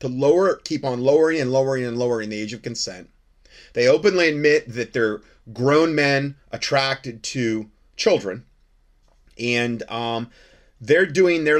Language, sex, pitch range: English, male, 120-160 Hz